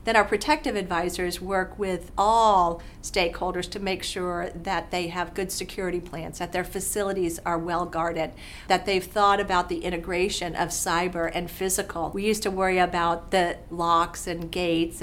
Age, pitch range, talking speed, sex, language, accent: 50-69, 175-215 Hz, 170 wpm, female, English, American